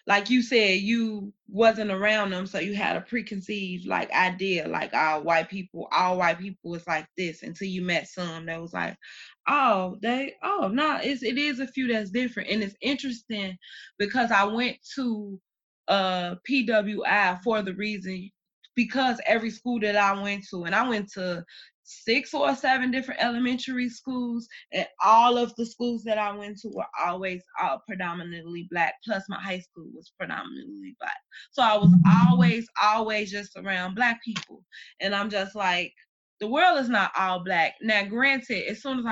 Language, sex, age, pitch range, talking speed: English, female, 20-39, 185-235 Hz, 175 wpm